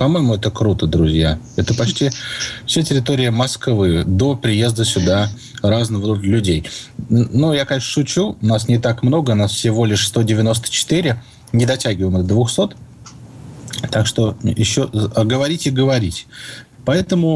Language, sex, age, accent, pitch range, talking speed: Russian, male, 20-39, native, 110-140 Hz, 130 wpm